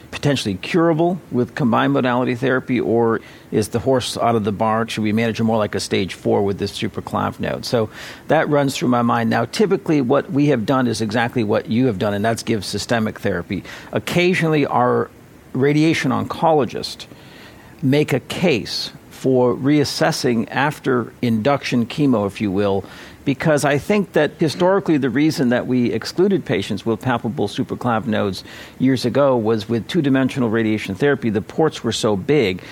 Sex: male